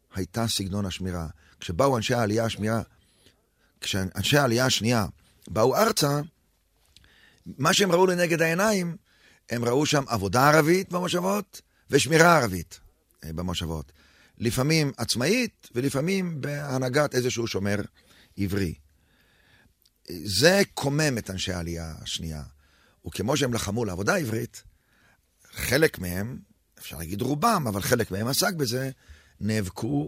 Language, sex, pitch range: Hebrew, male, 90-135 Hz